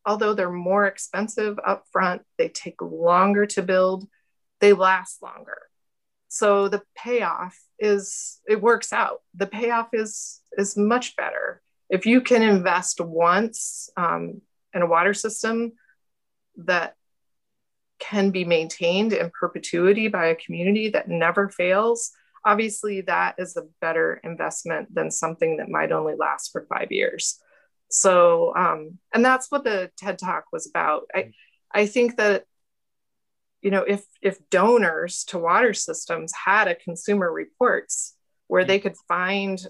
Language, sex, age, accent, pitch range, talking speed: English, female, 30-49, American, 175-220 Hz, 140 wpm